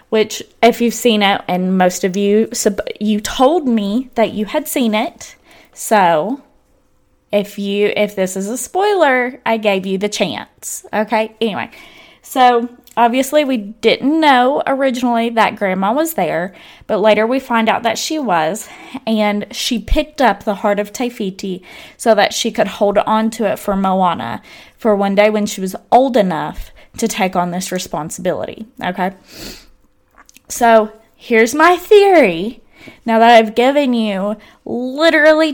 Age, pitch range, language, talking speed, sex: 20-39, 210-260 Hz, English, 155 wpm, female